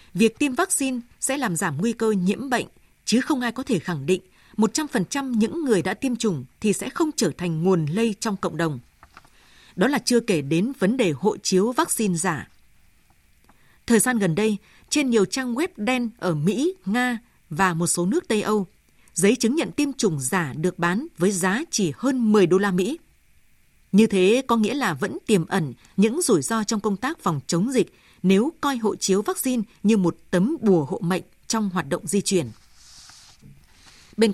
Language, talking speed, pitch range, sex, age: Vietnamese, 190 wpm, 185-240 Hz, female, 20-39